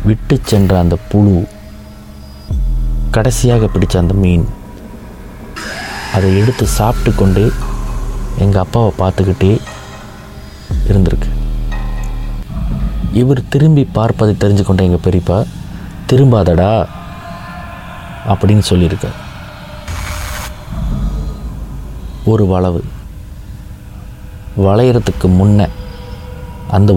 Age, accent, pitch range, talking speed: 30-49, native, 90-105 Hz, 65 wpm